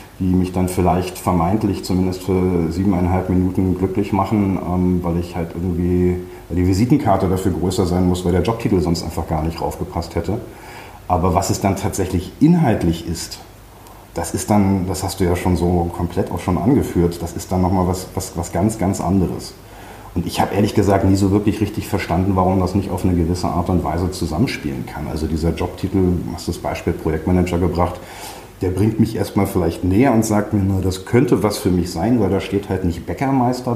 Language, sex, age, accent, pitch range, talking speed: German, male, 40-59, German, 90-105 Hz, 205 wpm